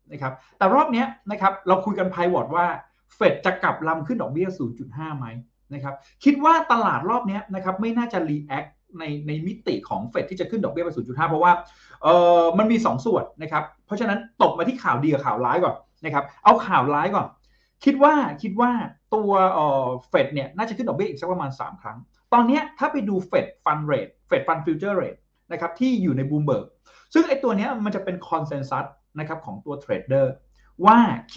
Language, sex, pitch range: Thai, male, 145-230 Hz